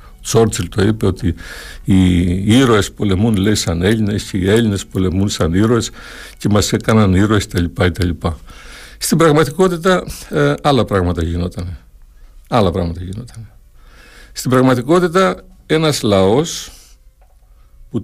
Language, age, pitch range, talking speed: Greek, 60-79, 95-125 Hz, 115 wpm